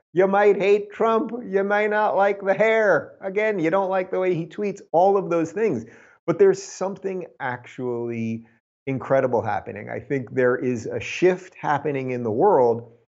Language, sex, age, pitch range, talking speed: English, male, 30-49, 115-175 Hz, 175 wpm